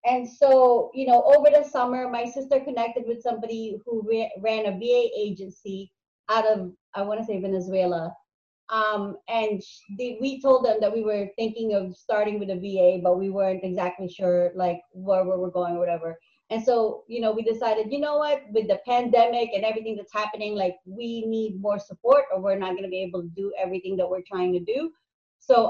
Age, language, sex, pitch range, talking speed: 30-49, English, female, 200-245 Hz, 210 wpm